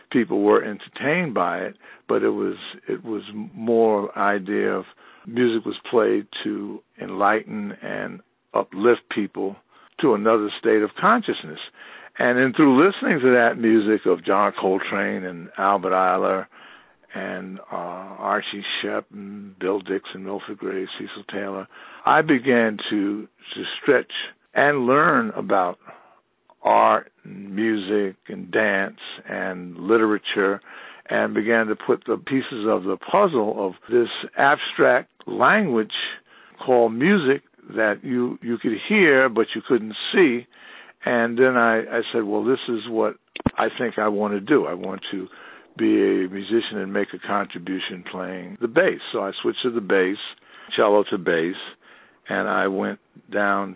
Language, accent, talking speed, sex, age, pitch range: English, American, 145 wpm, male, 60-79, 100-120 Hz